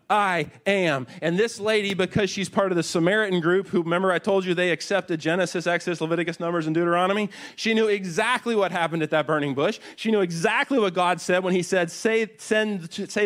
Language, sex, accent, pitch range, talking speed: English, male, American, 120-185 Hz, 205 wpm